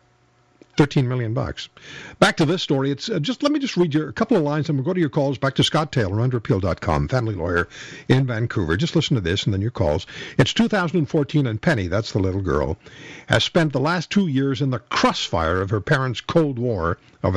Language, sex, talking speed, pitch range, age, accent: English, male, 225 wpm, 120-160 Hz, 50-69, American